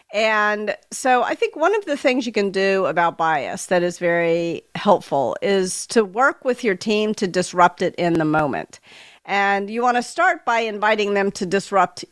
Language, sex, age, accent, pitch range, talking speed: English, female, 50-69, American, 175-235 Hz, 195 wpm